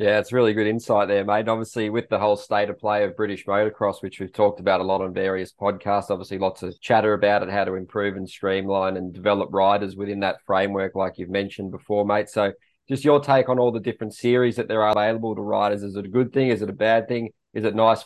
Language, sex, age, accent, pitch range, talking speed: English, male, 20-39, Australian, 100-110 Hz, 255 wpm